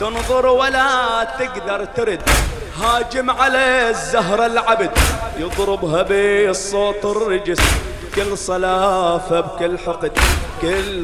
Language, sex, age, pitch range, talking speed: English, male, 30-49, 185-230 Hz, 85 wpm